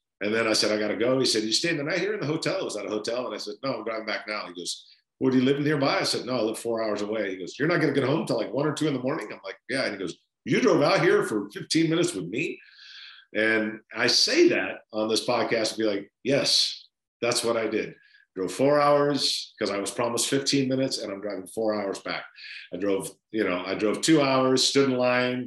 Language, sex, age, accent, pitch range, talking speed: English, male, 50-69, American, 105-140 Hz, 280 wpm